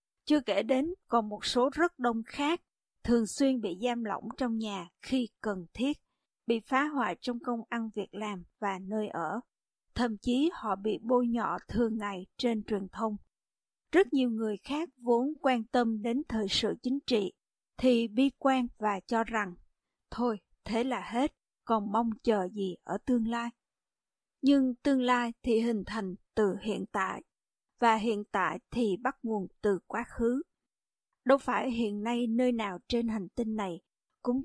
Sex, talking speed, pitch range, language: female, 170 wpm, 210-255 Hz, Vietnamese